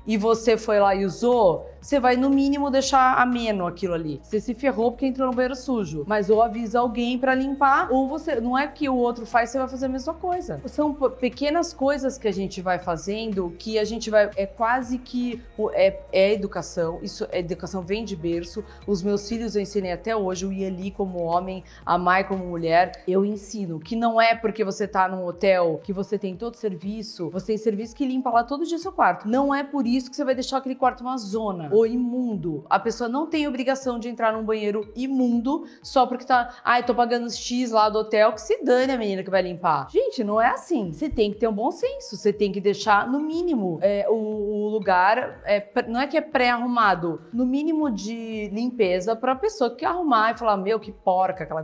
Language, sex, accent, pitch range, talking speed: Portuguese, female, Brazilian, 190-255 Hz, 225 wpm